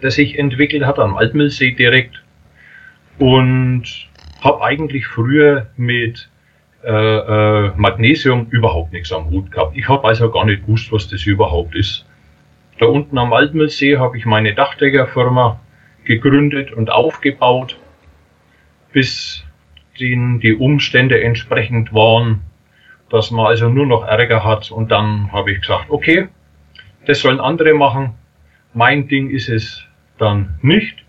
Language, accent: German, German